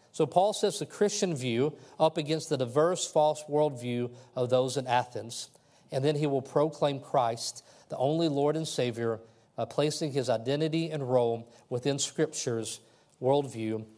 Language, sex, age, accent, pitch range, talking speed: English, male, 40-59, American, 120-155 Hz, 160 wpm